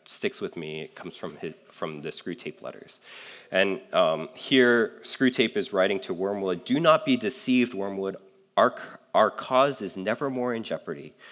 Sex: male